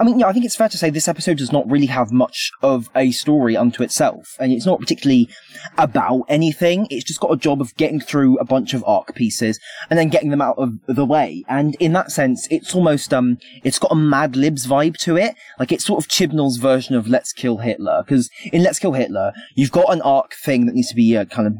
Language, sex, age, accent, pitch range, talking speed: English, male, 20-39, British, 125-160 Hz, 250 wpm